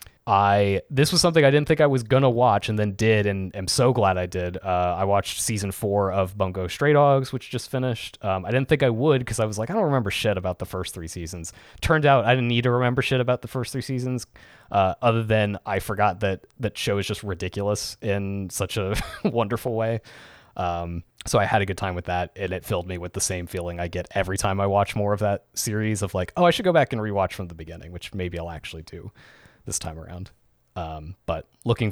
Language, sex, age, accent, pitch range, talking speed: English, male, 20-39, American, 90-110 Hz, 245 wpm